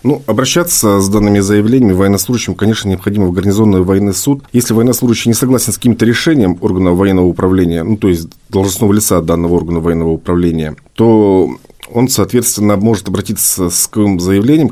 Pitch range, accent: 90-115 Hz, native